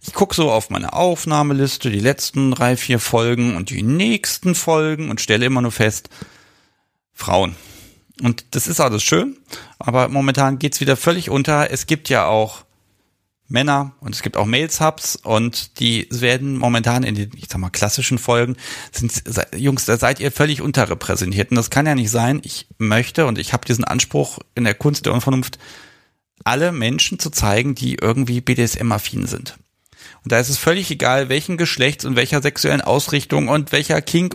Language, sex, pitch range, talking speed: German, male, 120-145 Hz, 175 wpm